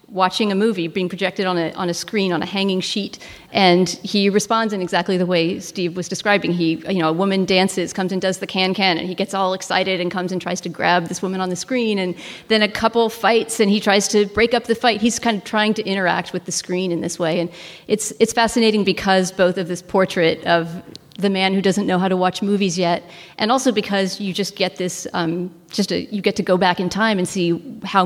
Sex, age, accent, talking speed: female, 40-59, American, 250 wpm